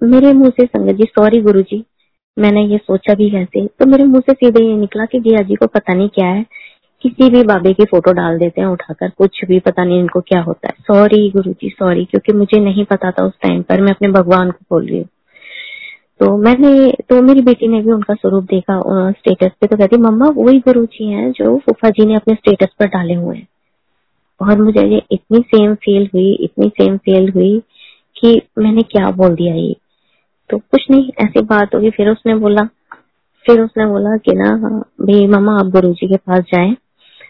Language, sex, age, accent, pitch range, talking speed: Hindi, female, 20-39, native, 195-245 Hz, 205 wpm